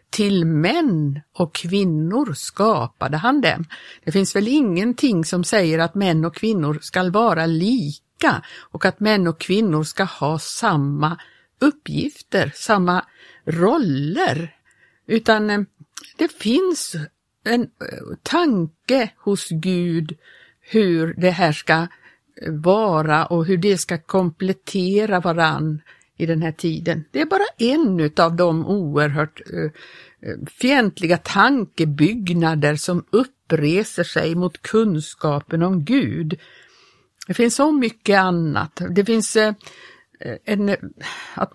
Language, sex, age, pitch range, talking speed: Swedish, female, 60-79, 165-225 Hz, 115 wpm